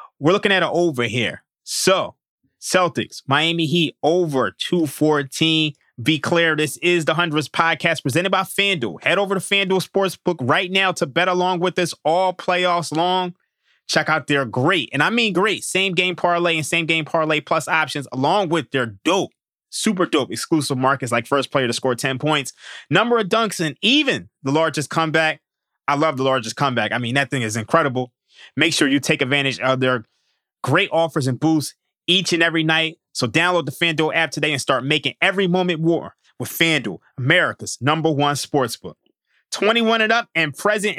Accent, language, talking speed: American, English, 185 wpm